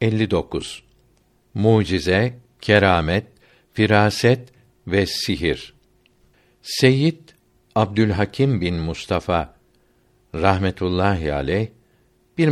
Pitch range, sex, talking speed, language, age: 90-120 Hz, male, 60 wpm, Turkish, 60-79